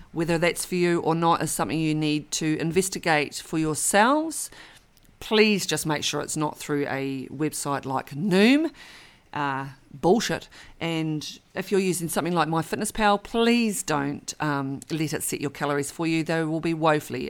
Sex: female